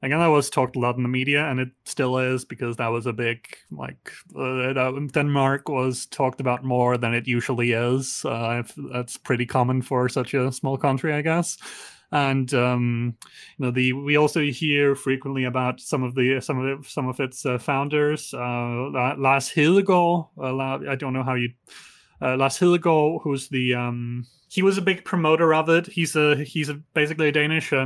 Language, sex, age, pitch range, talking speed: English, male, 30-49, 125-150 Hz, 195 wpm